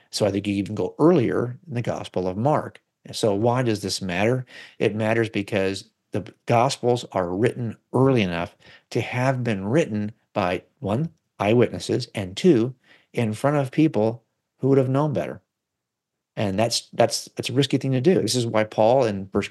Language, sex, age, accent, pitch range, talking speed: English, male, 50-69, American, 110-155 Hz, 180 wpm